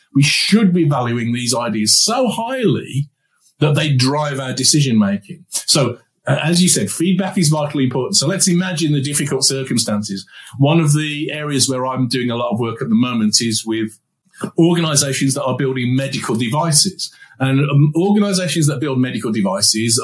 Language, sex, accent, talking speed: English, male, British, 165 wpm